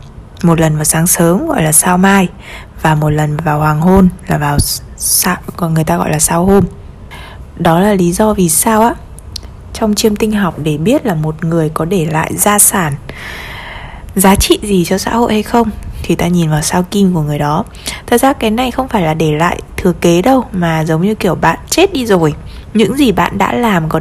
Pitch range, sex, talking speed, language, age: 170-225 Hz, female, 215 wpm, Vietnamese, 20-39